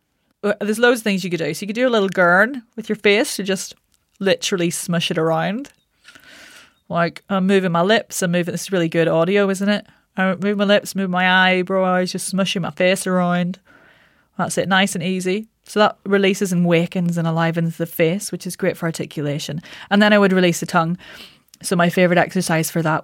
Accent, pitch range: British, 170-205 Hz